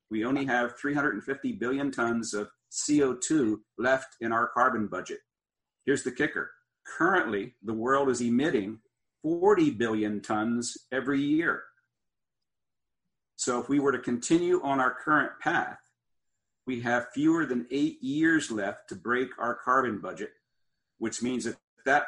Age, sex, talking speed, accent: 50-69, male, 140 wpm, American